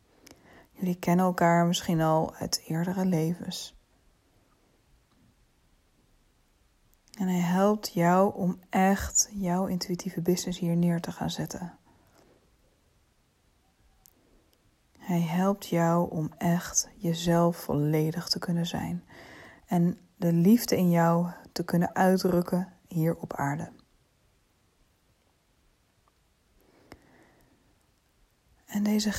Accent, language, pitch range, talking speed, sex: Dutch, Dutch, 170-200 Hz, 95 wpm, female